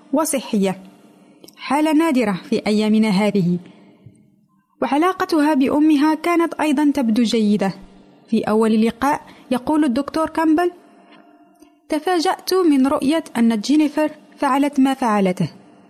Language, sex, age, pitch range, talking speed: Arabic, female, 30-49, 225-300 Hz, 100 wpm